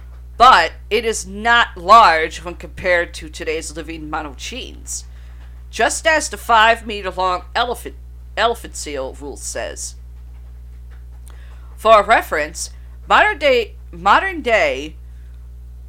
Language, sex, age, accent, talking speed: English, female, 50-69, American, 85 wpm